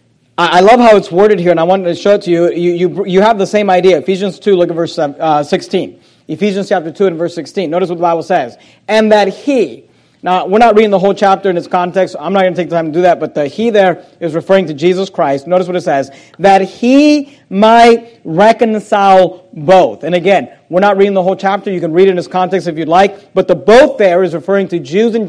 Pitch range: 175-220 Hz